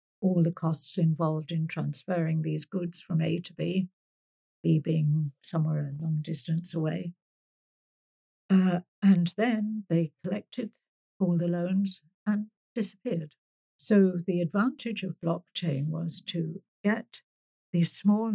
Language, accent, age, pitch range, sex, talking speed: English, British, 60-79, 160-185 Hz, female, 130 wpm